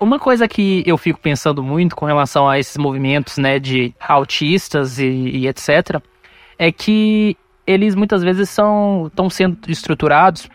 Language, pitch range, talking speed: Portuguese, 145-200 Hz, 155 wpm